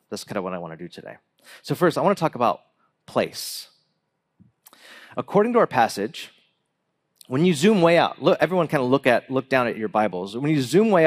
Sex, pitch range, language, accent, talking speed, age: male, 125-165 Hz, English, American, 210 wpm, 40-59